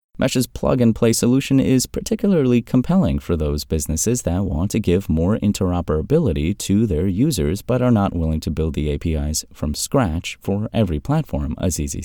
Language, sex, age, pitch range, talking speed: English, male, 30-49, 80-115 Hz, 160 wpm